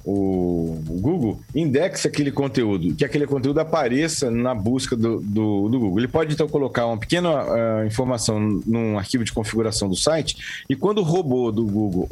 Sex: male